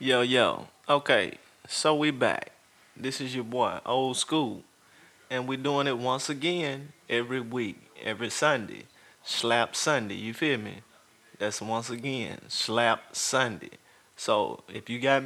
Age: 30-49